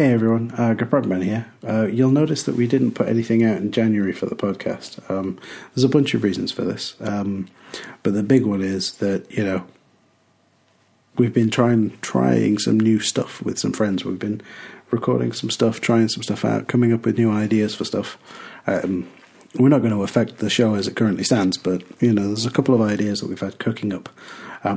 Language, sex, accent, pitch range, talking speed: English, male, British, 105-125 Hz, 210 wpm